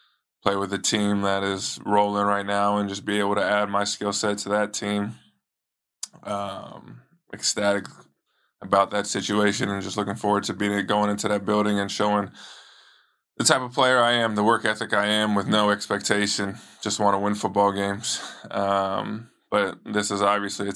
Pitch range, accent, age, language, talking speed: 100-105 Hz, American, 20-39, English, 185 wpm